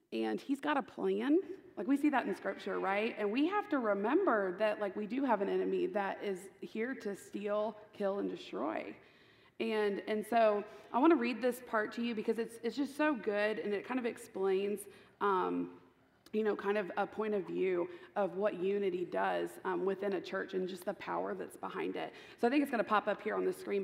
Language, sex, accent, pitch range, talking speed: English, female, American, 200-275 Hz, 225 wpm